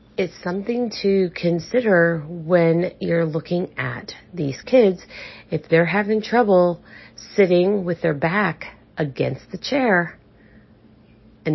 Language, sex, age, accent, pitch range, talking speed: English, female, 40-59, American, 140-190 Hz, 115 wpm